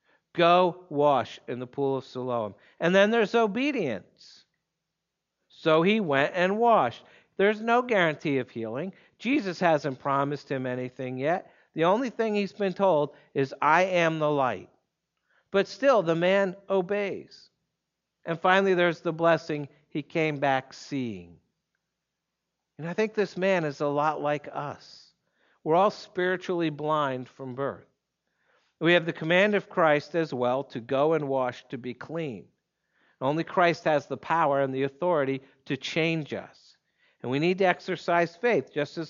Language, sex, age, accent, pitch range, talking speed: English, male, 60-79, American, 140-185 Hz, 155 wpm